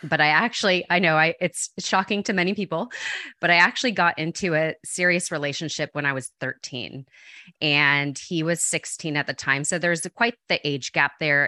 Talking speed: 195 wpm